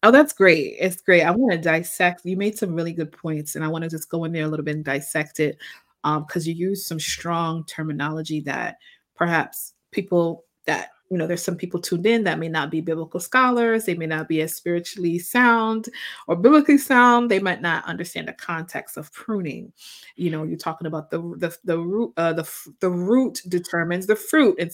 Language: English